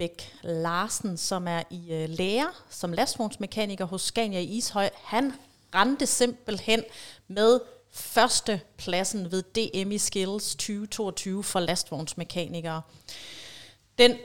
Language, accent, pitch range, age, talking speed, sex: Danish, native, 180-225 Hz, 30-49, 100 wpm, female